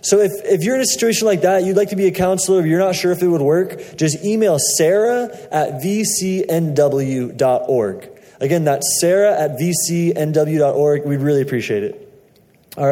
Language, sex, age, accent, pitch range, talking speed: English, male, 20-39, American, 155-185 Hz, 175 wpm